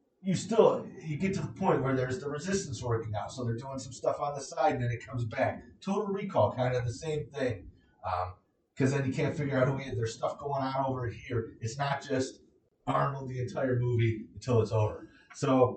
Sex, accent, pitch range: male, American, 115-150 Hz